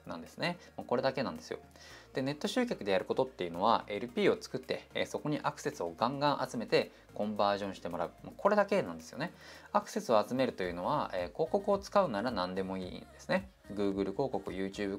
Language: Japanese